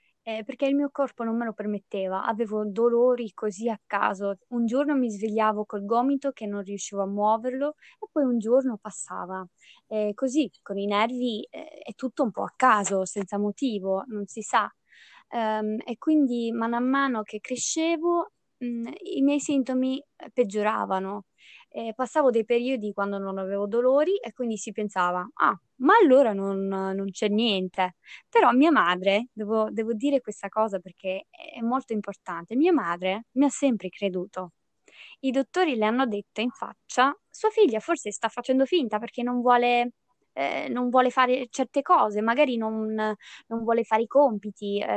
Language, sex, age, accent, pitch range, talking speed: Italian, female, 20-39, native, 210-265 Hz, 165 wpm